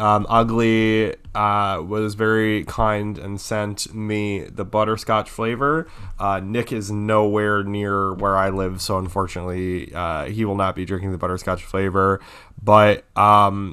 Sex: male